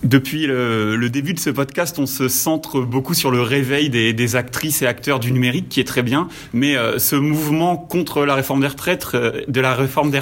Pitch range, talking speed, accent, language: 130-160 Hz, 215 wpm, French, French